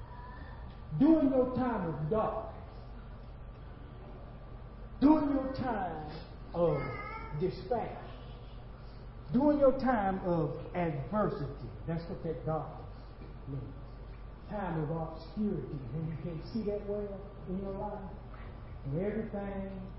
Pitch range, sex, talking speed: 120-170 Hz, male, 100 wpm